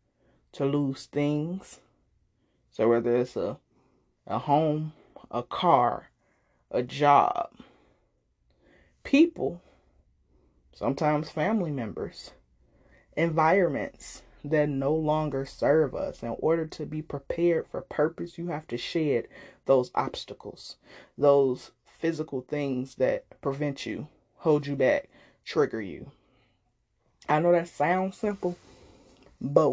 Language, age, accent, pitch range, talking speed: English, 20-39, American, 130-155 Hz, 105 wpm